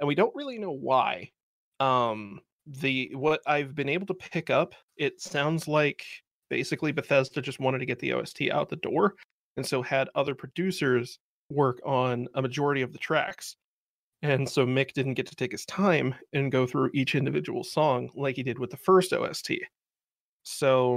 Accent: American